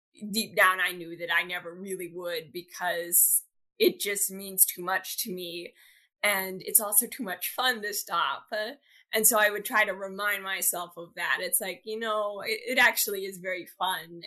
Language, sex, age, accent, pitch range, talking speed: English, female, 10-29, American, 175-205 Hz, 190 wpm